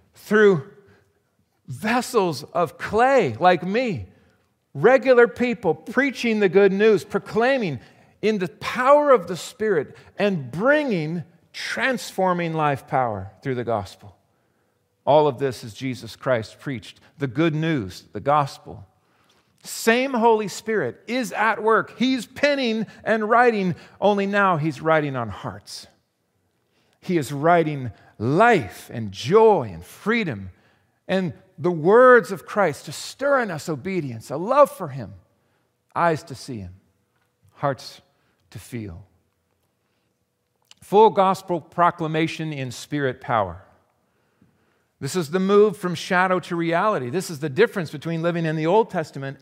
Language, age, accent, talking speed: English, 50-69, American, 130 wpm